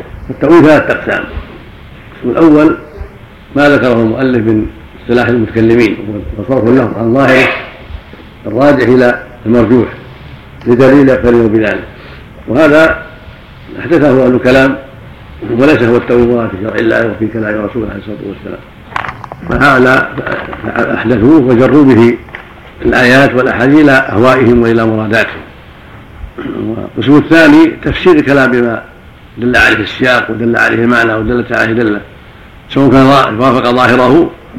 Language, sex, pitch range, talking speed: Arabic, male, 115-135 Hz, 110 wpm